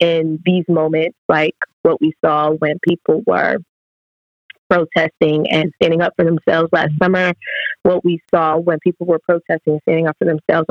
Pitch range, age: 155-180 Hz, 20-39